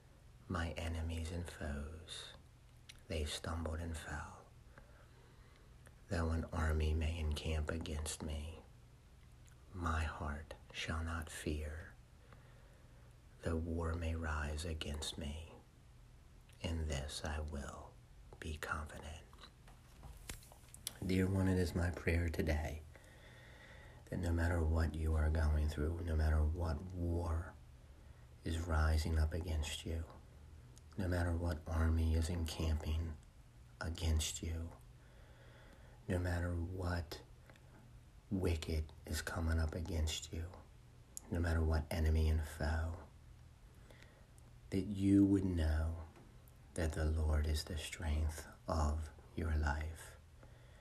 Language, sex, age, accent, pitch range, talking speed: English, male, 60-79, American, 75-85 Hz, 110 wpm